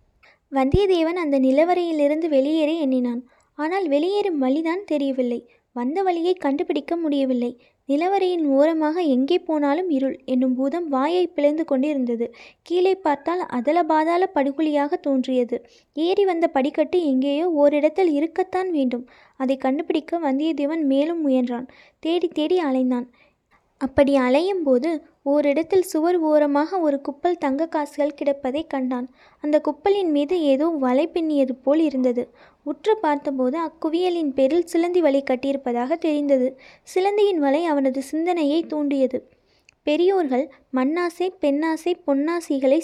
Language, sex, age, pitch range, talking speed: Tamil, female, 20-39, 270-335 Hz, 110 wpm